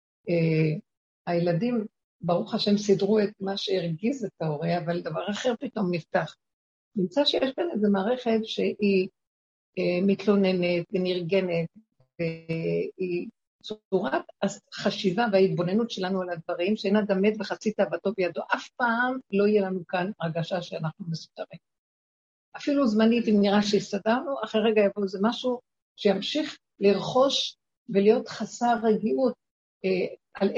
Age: 50-69